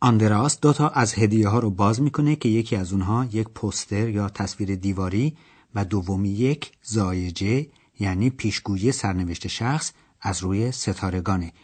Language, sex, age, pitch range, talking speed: Persian, male, 40-59, 100-130 Hz, 150 wpm